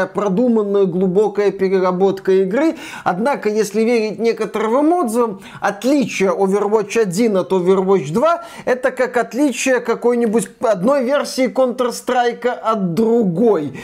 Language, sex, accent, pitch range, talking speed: Russian, male, native, 185-240 Hz, 105 wpm